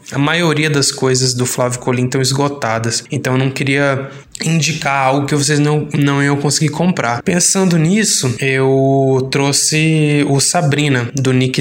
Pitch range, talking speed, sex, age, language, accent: 125-145 Hz, 155 wpm, male, 20-39, Portuguese, Brazilian